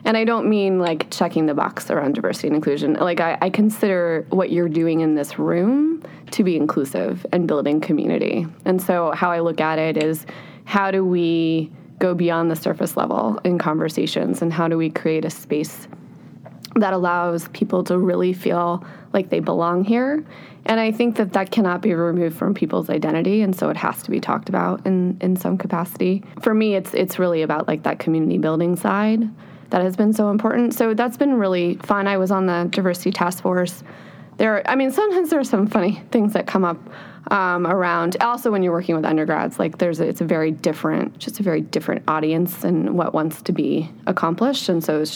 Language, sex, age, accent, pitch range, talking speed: English, female, 20-39, American, 165-205 Hz, 205 wpm